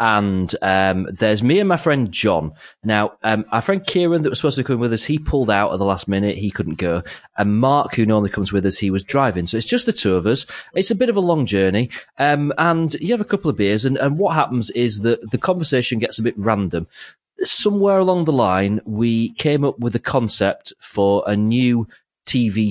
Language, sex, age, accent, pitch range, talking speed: English, male, 30-49, British, 95-135 Hz, 235 wpm